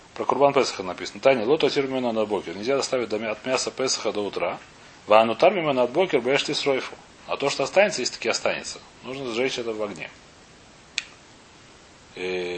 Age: 30-49